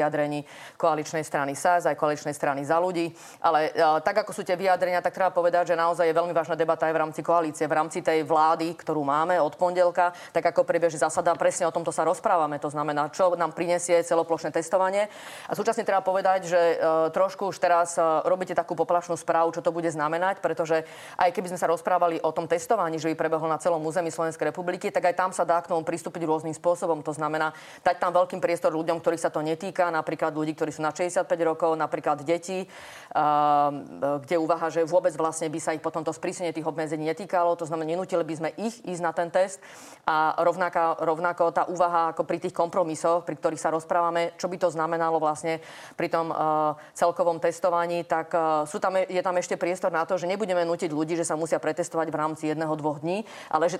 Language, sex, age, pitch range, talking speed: Slovak, female, 30-49, 160-180 Hz, 210 wpm